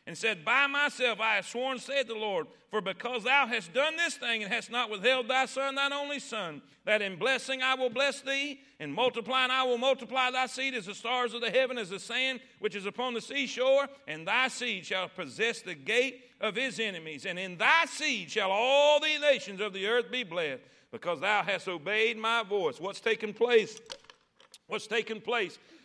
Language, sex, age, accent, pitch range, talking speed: English, male, 50-69, American, 220-255 Hz, 205 wpm